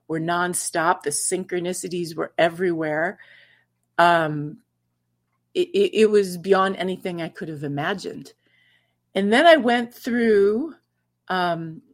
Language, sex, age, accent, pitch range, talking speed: English, female, 40-59, American, 150-205 Hz, 115 wpm